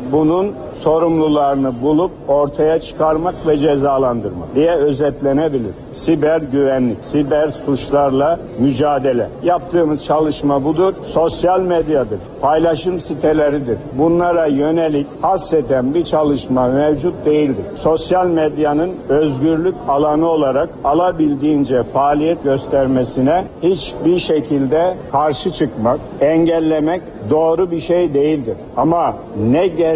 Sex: male